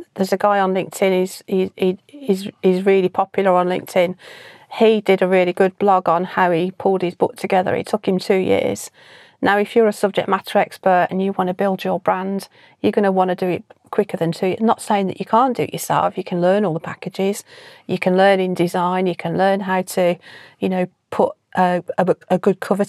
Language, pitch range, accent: English, 185-205 Hz, British